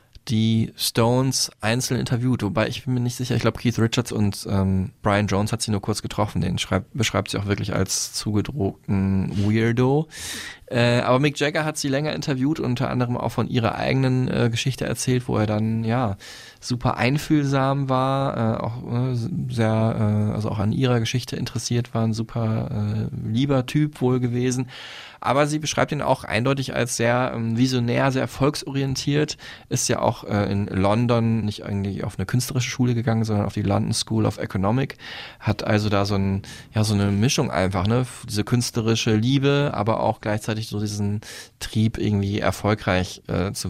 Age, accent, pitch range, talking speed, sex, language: 20-39, German, 105-125 Hz, 175 wpm, male, German